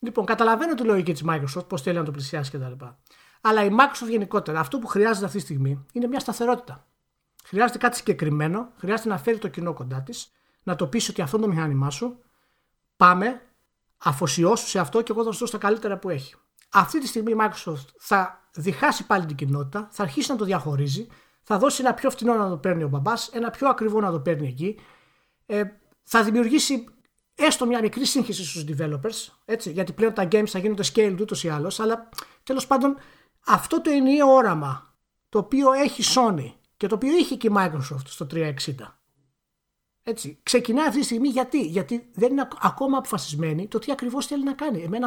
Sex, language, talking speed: male, Greek, 190 wpm